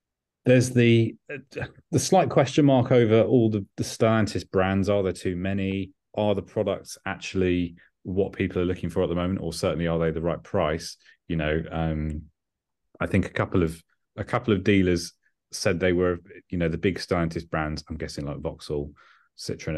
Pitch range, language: 85-115 Hz, English